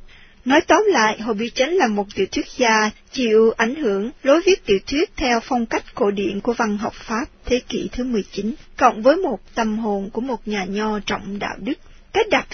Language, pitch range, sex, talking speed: Vietnamese, 210-295 Hz, female, 215 wpm